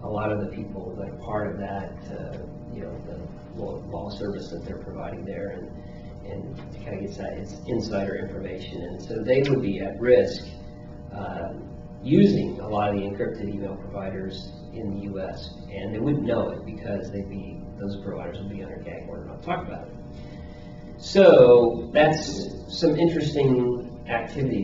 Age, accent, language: 40-59, American, English